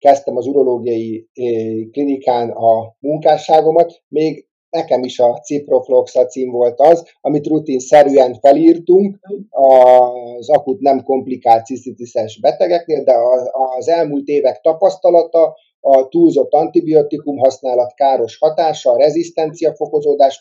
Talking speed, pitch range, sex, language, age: 105 wpm, 130-185 Hz, male, Hungarian, 30-49